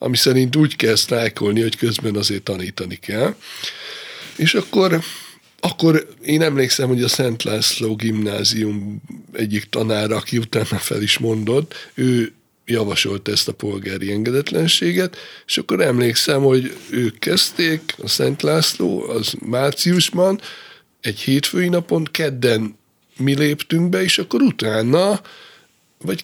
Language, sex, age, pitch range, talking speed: Hungarian, male, 60-79, 110-155 Hz, 125 wpm